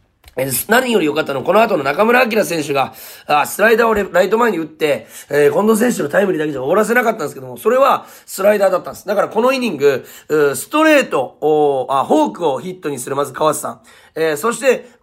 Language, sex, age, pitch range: Japanese, male, 30-49, 145-210 Hz